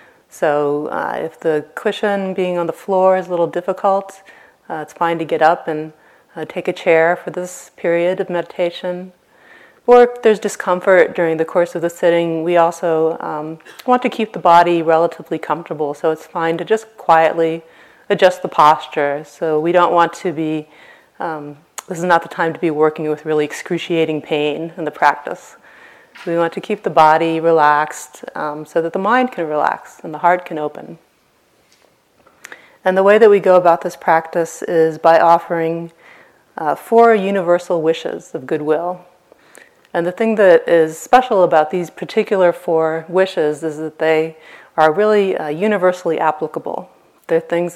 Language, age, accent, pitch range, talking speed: English, 30-49, American, 160-185 Hz, 175 wpm